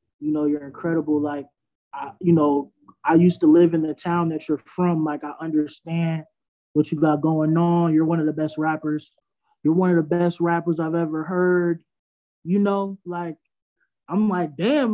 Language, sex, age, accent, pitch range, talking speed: English, male, 20-39, American, 160-200 Hz, 190 wpm